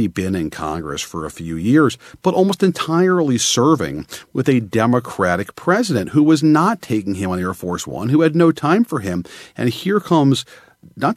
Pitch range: 95-140 Hz